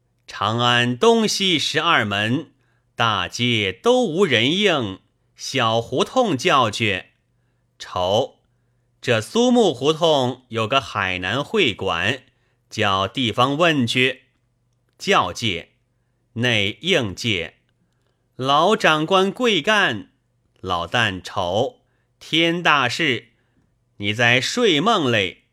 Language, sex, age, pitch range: Chinese, male, 30-49, 115-150 Hz